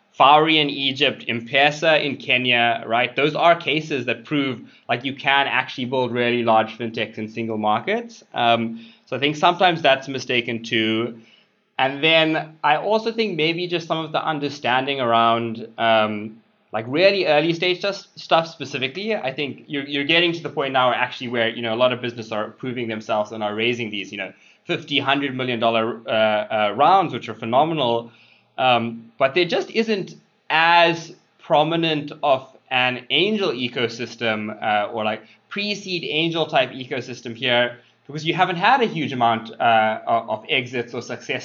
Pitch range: 115-155 Hz